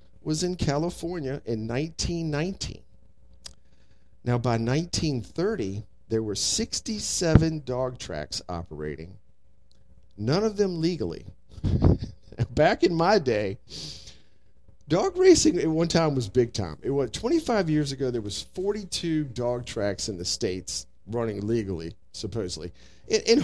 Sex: male